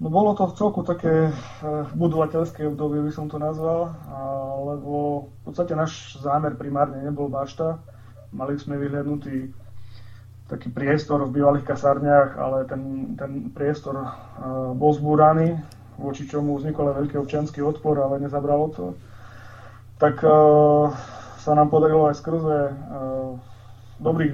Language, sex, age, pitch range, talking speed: Slovak, male, 20-39, 130-150 Hz, 125 wpm